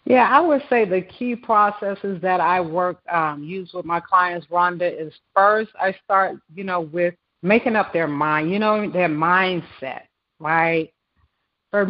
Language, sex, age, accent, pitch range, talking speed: English, female, 40-59, American, 165-215 Hz, 165 wpm